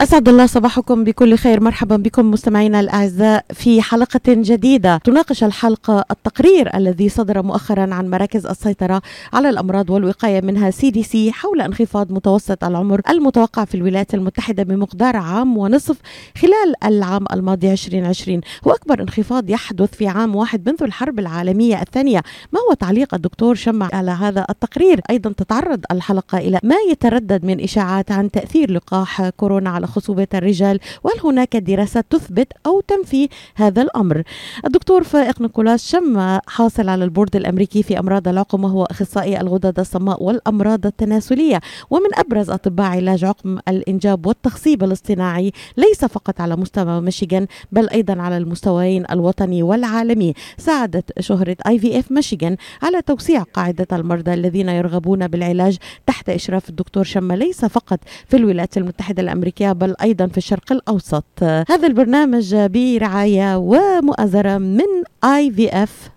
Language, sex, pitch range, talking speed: Arabic, female, 190-240 Hz, 140 wpm